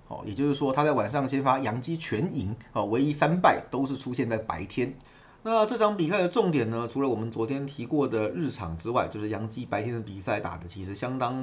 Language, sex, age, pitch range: Chinese, male, 30-49, 110-140 Hz